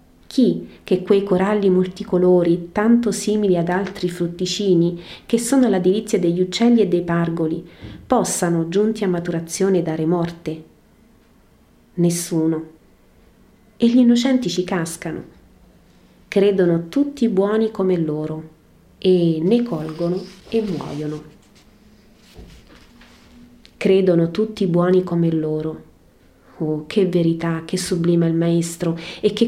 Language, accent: Italian, native